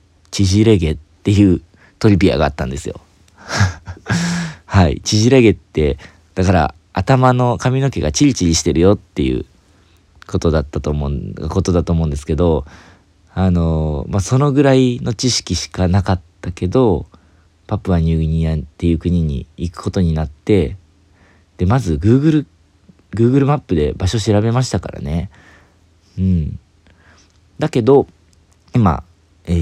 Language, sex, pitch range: Japanese, male, 80-100 Hz